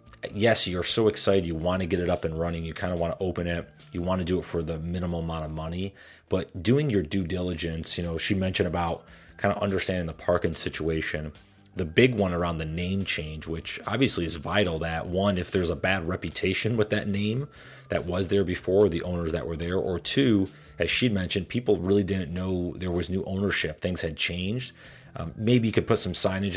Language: English